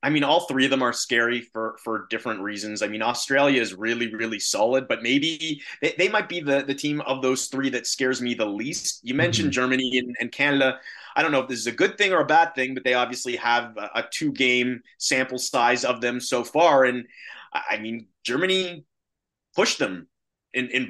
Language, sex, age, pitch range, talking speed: English, male, 30-49, 130-165 Hz, 220 wpm